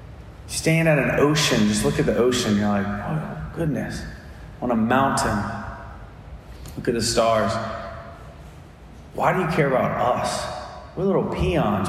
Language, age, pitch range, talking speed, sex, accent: English, 30-49, 110-160 Hz, 145 wpm, male, American